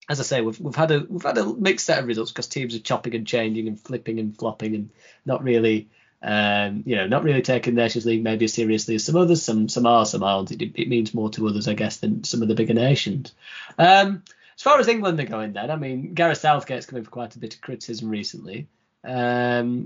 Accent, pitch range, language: British, 110-145 Hz, English